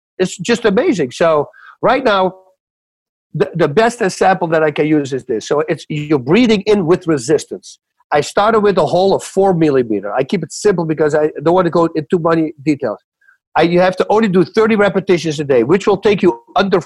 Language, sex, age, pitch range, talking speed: English, male, 50-69, 160-205 Hz, 215 wpm